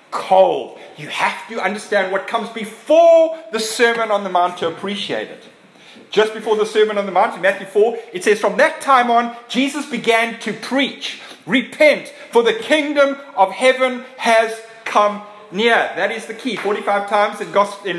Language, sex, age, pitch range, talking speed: English, male, 30-49, 190-245 Hz, 175 wpm